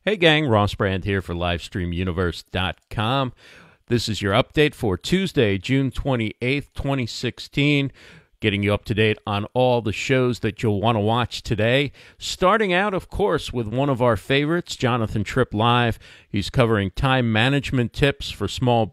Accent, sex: American, male